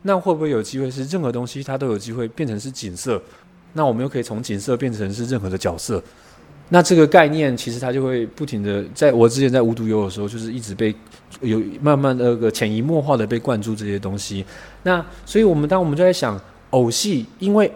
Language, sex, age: Chinese, male, 20-39